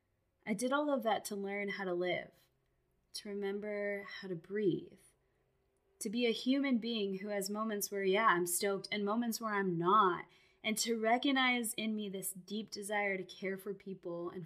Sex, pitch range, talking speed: female, 185-225 Hz, 185 wpm